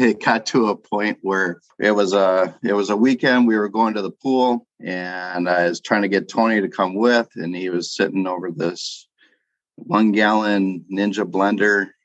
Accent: American